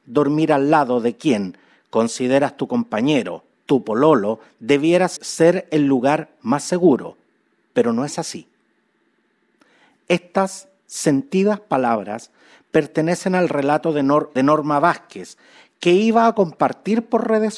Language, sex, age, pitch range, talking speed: Spanish, male, 50-69, 150-200 Hz, 125 wpm